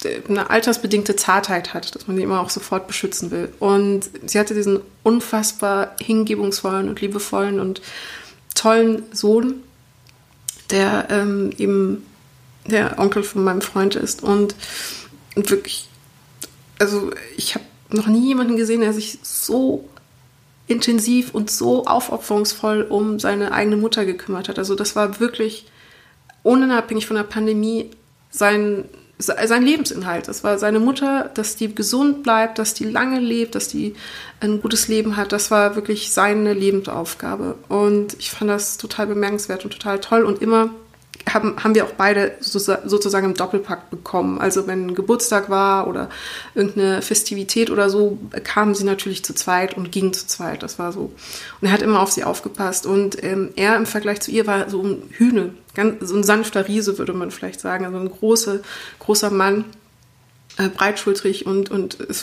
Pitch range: 195-220 Hz